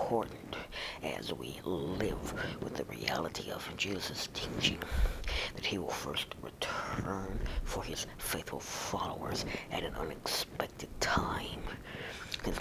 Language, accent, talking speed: English, American, 115 wpm